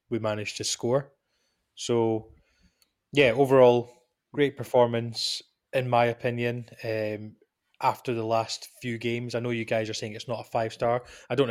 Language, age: English, 20-39